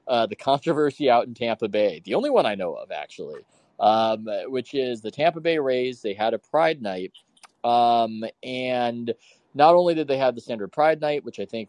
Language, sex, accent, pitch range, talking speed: English, male, American, 110-140 Hz, 205 wpm